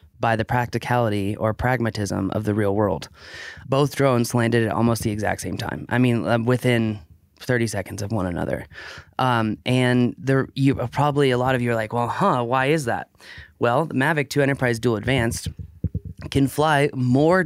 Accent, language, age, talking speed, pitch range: American, English, 20-39, 180 wpm, 105-130 Hz